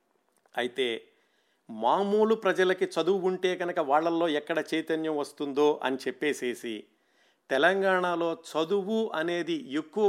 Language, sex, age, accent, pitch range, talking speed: Telugu, male, 50-69, native, 150-185 Hz, 95 wpm